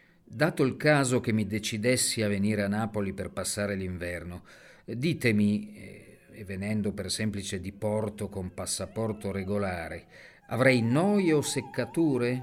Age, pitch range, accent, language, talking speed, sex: 50-69, 100-125 Hz, native, Italian, 130 wpm, male